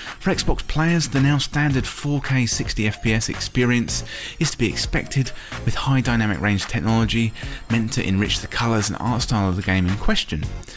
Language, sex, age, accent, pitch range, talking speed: English, male, 30-49, British, 100-135 Hz, 175 wpm